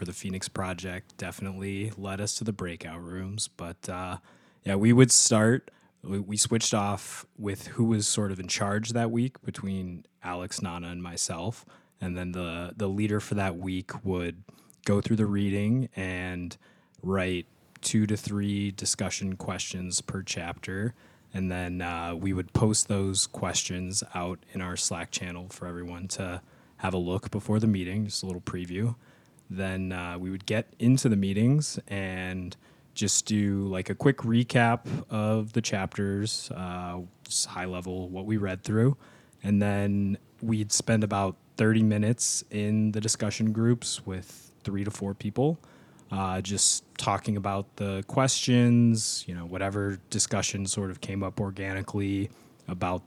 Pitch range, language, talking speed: 95-110 Hz, English, 160 wpm